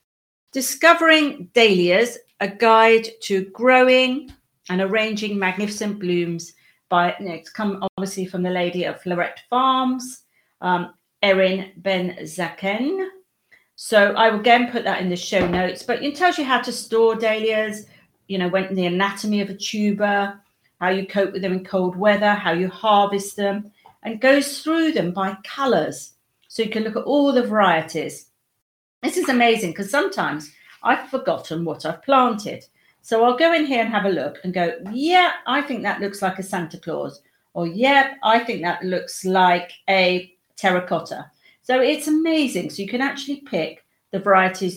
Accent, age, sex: British, 40-59, female